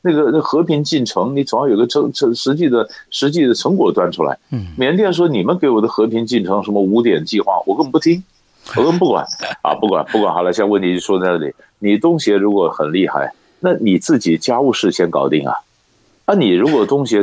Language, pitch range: Chinese, 95-125 Hz